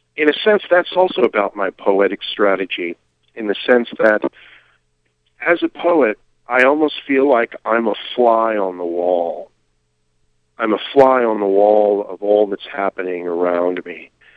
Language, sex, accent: English, male, American